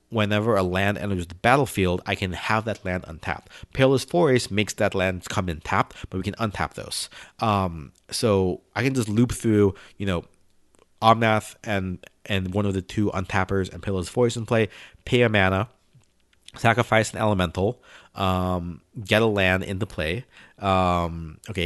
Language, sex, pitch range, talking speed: English, male, 90-110 Hz, 170 wpm